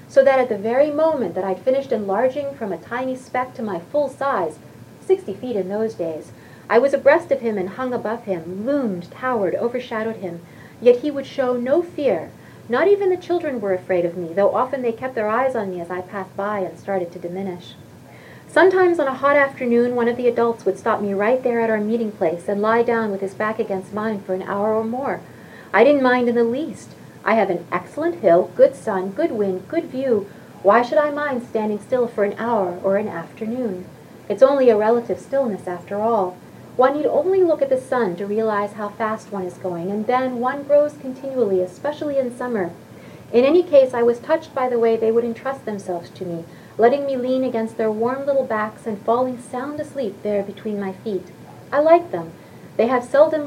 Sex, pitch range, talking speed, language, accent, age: female, 200-265 Hz, 215 wpm, English, American, 40-59